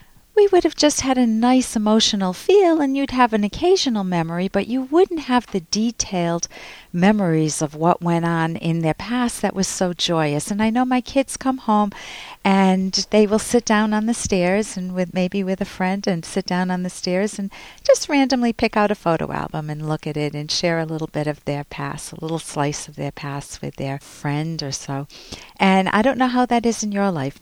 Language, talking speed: English, 220 wpm